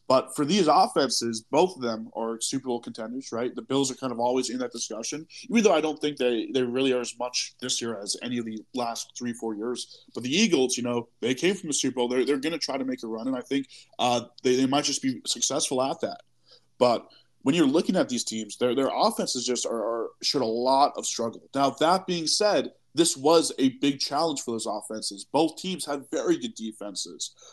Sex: male